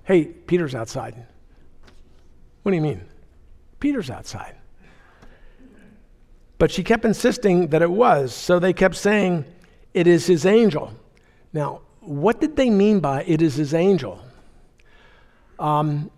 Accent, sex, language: American, male, English